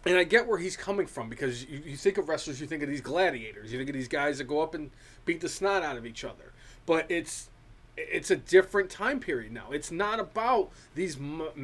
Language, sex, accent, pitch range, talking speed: English, male, American, 145-205 Hz, 240 wpm